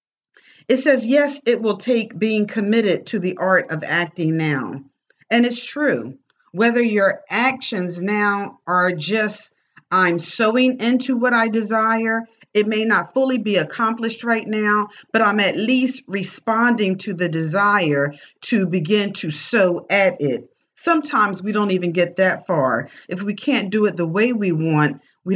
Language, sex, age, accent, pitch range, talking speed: English, female, 50-69, American, 170-225 Hz, 160 wpm